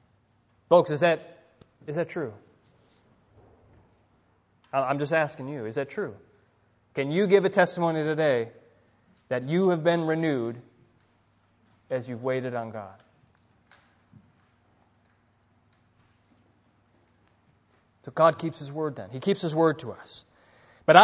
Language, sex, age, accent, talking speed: English, male, 30-49, American, 120 wpm